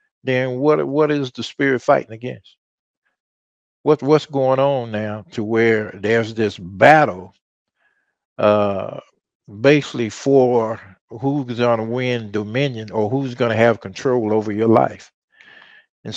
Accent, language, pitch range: American, English, 115-155 Hz